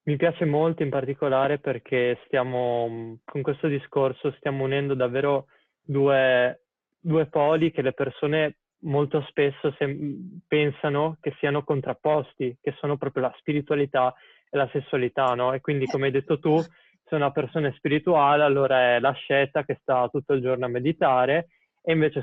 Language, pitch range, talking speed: Italian, 135-160 Hz, 155 wpm